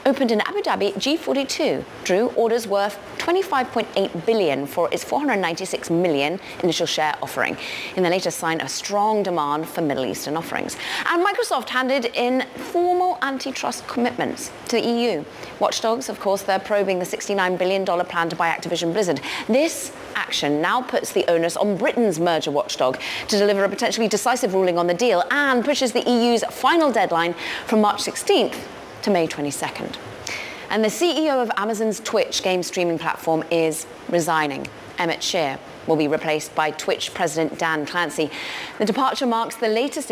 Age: 30-49